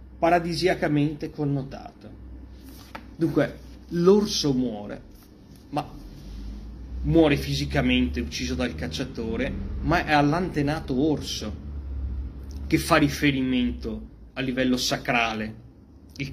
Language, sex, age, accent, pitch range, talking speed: Italian, male, 30-49, native, 110-150 Hz, 80 wpm